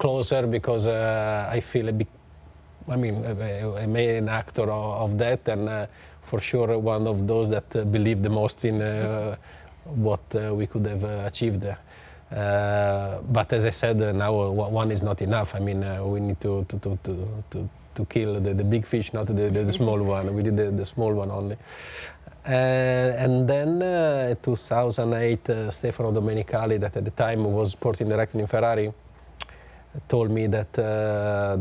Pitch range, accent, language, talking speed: 100-115 Hz, Italian, English, 185 wpm